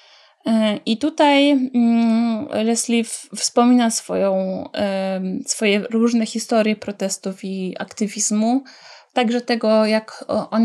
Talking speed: 85 wpm